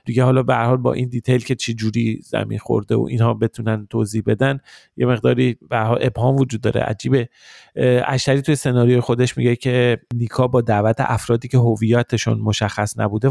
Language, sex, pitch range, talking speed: Persian, male, 115-140 Hz, 170 wpm